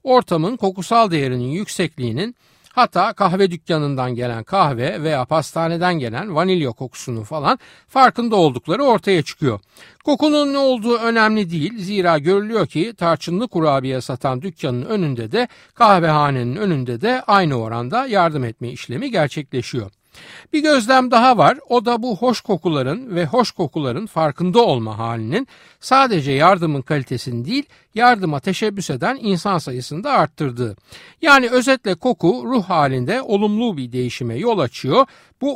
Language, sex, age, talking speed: Turkish, male, 60-79, 130 wpm